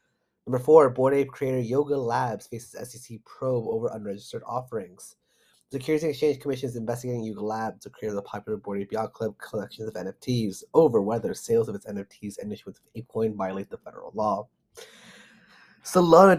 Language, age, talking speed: English, 30-49, 165 wpm